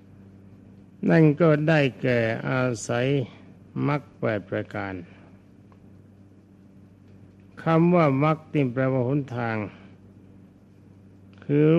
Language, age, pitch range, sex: Thai, 60-79, 95-135 Hz, male